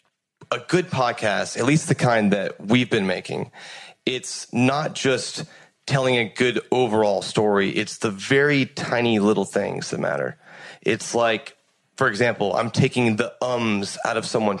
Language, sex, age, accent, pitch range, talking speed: English, male, 30-49, American, 120-145 Hz, 155 wpm